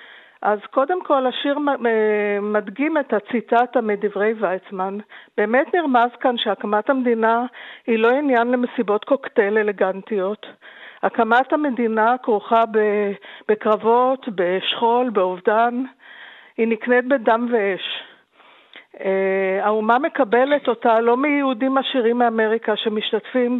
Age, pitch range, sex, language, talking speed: 50-69, 210-255 Hz, female, Hebrew, 95 wpm